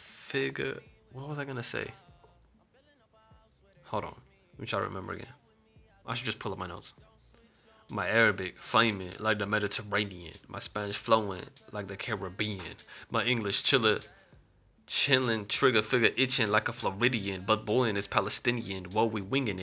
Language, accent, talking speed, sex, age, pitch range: English, American, 150 wpm, male, 20-39, 100-125 Hz